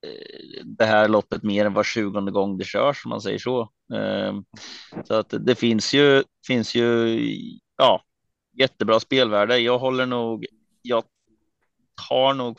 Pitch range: 105-125 Hz